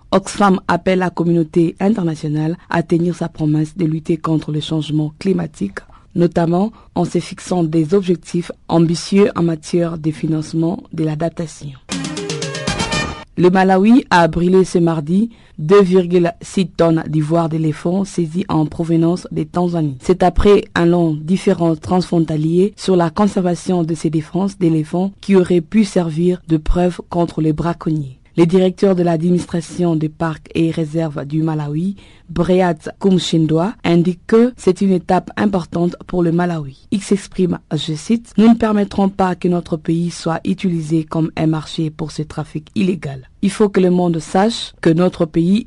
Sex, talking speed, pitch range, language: female, 150 wpm, 160-185 Hz, French